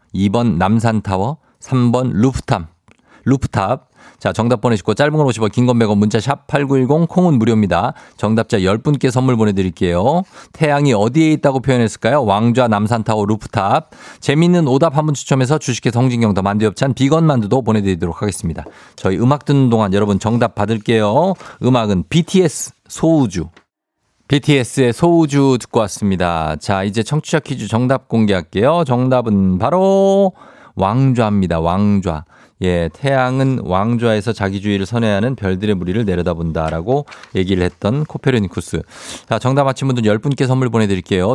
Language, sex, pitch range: Korean, male, 100-135 Hz